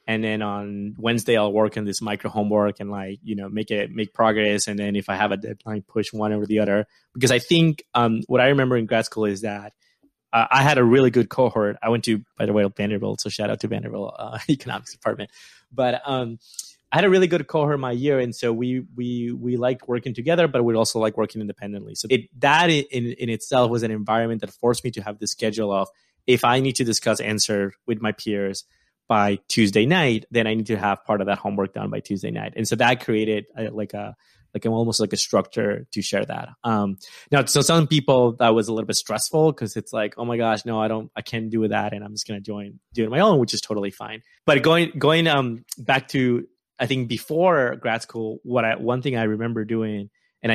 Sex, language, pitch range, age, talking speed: male, English, 105-125 Hz, 20-39, 240 wpm